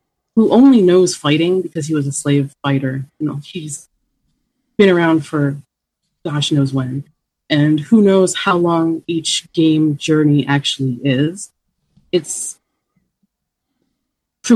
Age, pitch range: 30-49, 140-180 Hz